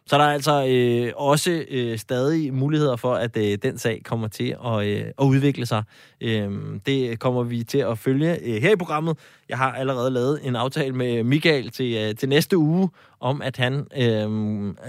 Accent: native